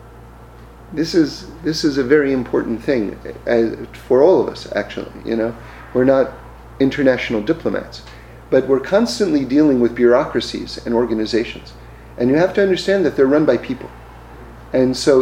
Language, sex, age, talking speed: English, male, 40-59, 155 wpm